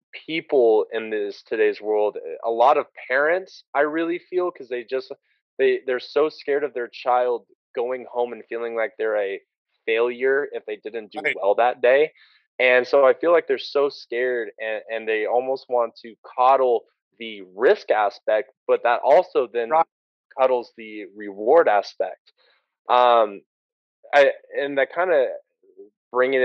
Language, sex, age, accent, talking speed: English, male, 20-39, American, 160 wpm